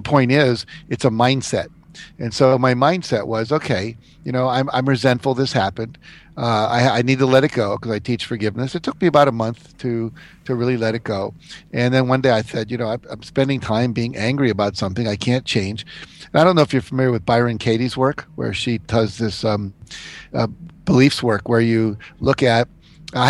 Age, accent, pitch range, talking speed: 50-69, American, 115-135 Hz, 220 wpm